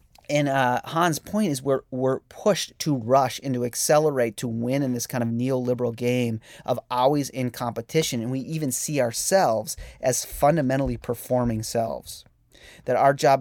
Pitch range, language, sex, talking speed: 115-145 Hz, English, male, 165 wpm